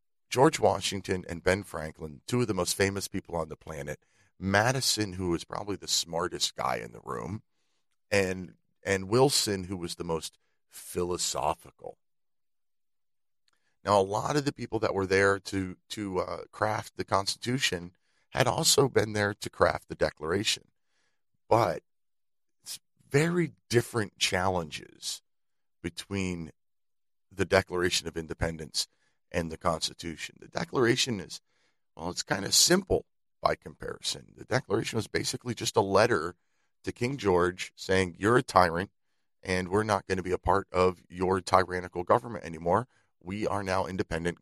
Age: 40-59